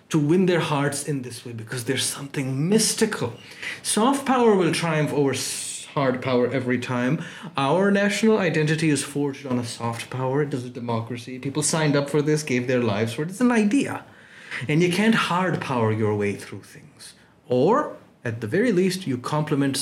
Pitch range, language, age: 125-180 Hz, Urdu, 30-49